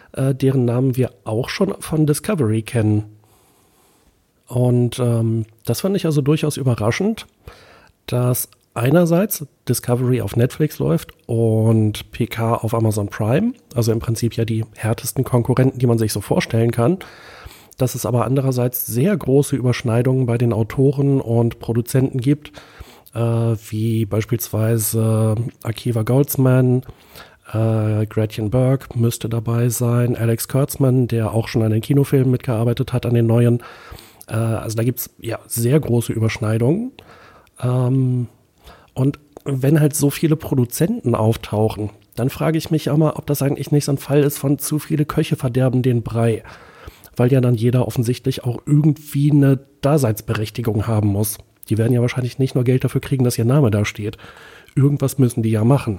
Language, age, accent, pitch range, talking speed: German, 40-59, German, 115-135 Hz, 155 wpm